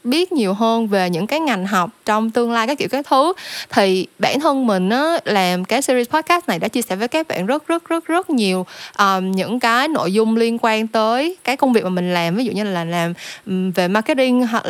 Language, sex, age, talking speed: Vietnamese, female, 10-29, 230 wpm